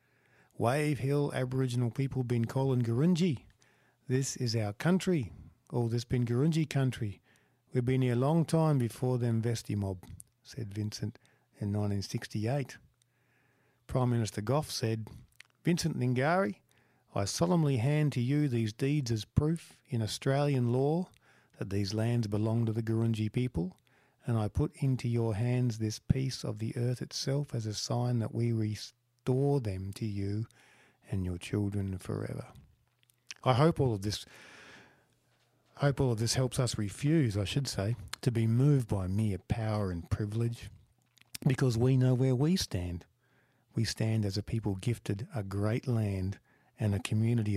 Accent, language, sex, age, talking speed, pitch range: Australian, English, male, 50-69, 155 wpm, 110-135 Hz